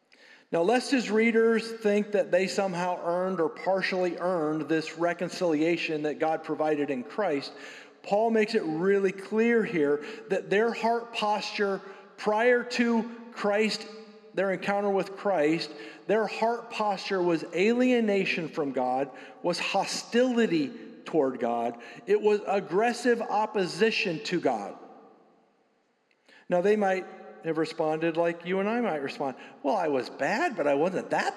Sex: male